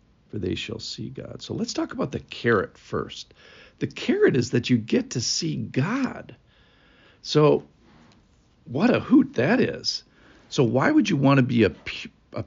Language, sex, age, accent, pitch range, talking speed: English, male, 50-69, American, 105-130 Hz, 175 wpm